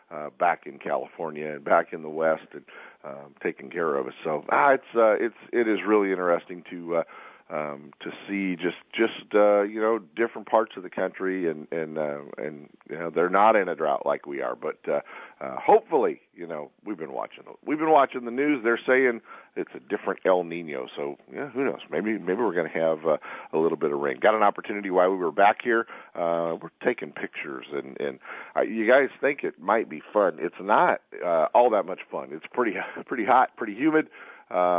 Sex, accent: male, American